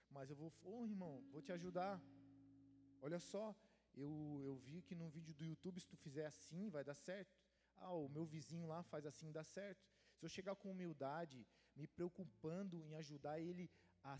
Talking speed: 195 wpm